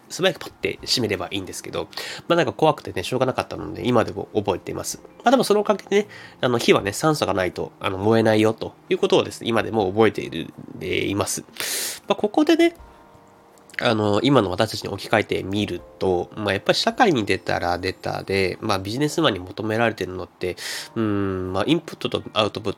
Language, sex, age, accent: Japanese, male, 20-39, native